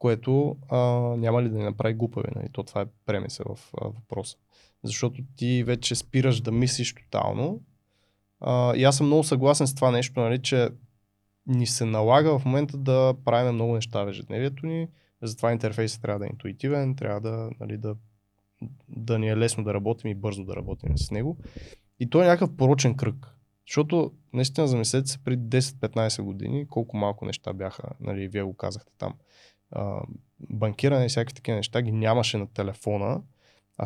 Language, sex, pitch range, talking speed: Bulgarian, male, 105-130 Hz, 175 wpm